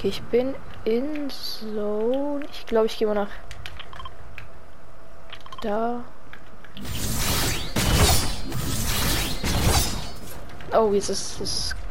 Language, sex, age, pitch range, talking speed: German, female, 10-29, 200-240 Hz, 75 wpm